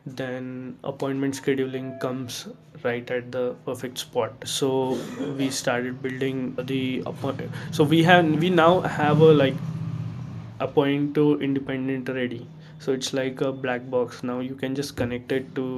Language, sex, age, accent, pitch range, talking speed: English, male, 20-39, Indian, 125-140 Hz, 155 wpm